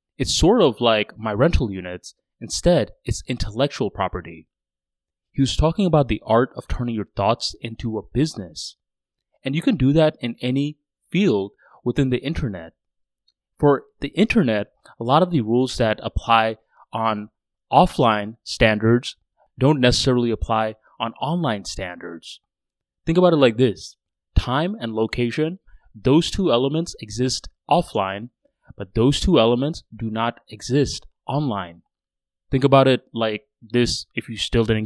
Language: English